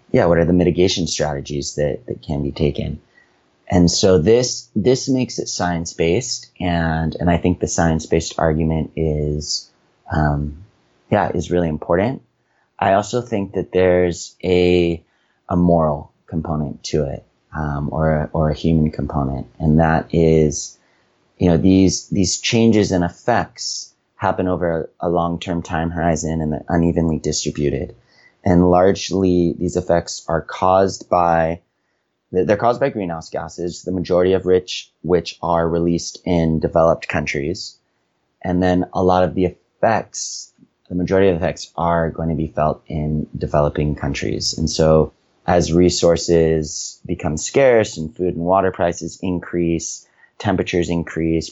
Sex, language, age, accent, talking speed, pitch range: male, English, 30-49, American, 150 wpm, 75-90 Hz